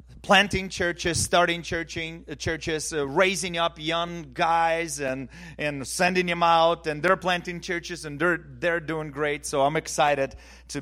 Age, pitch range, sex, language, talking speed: 30-49, 110-160 Hz, male, English, 150 wpm